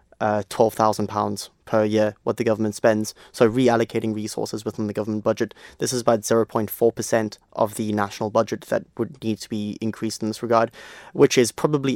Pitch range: 110-120 Hz